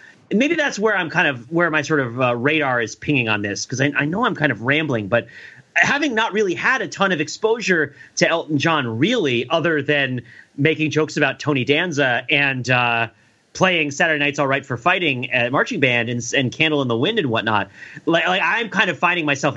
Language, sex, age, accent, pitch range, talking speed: English, male, 30-49, American, 130-175 Hz, 220 wpm